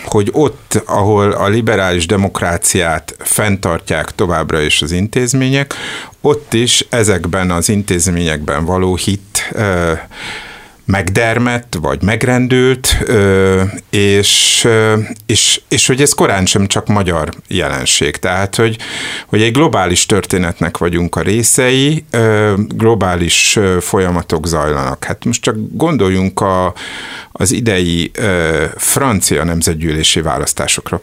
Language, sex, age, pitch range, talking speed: Hungarian, male, 50-69, 85-115 Hz, 100 wpm